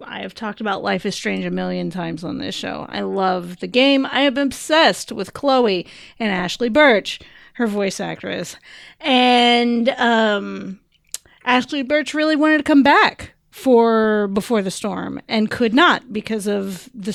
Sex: female